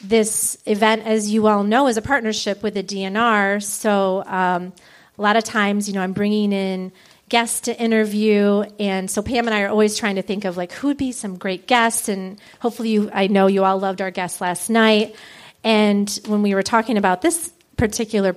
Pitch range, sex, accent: 195-230 Hz, female, American